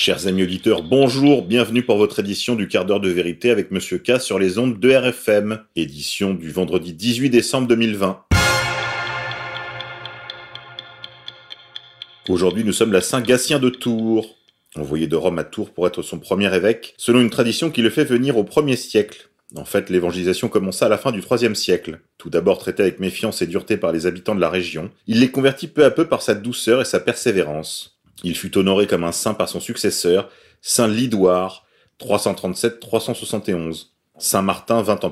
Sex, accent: male, French